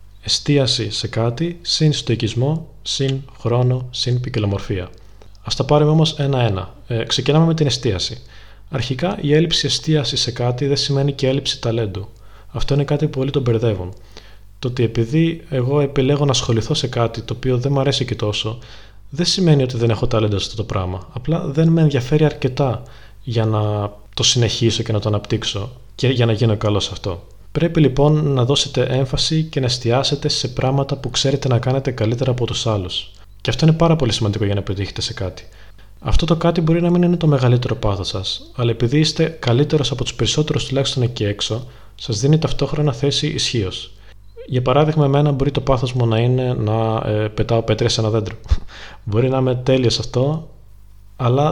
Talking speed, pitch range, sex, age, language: 185 wpm, 110-140 Hz, male, 20-39, Greek